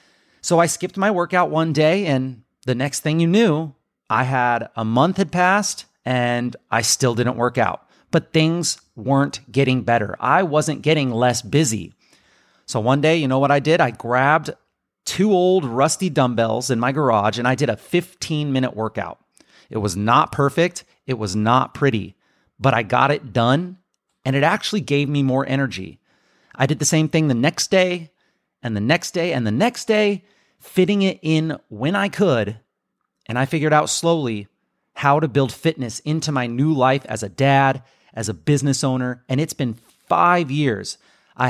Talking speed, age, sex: 185 wpm, 30-49, male